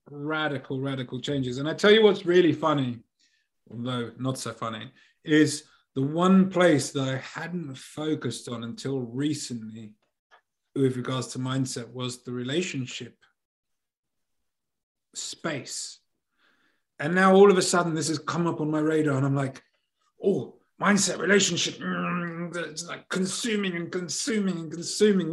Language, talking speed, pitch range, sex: English, 140 wpm, 130-170 Hz, male